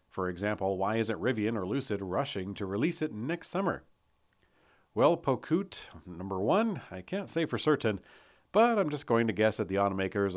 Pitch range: 95-120 Hz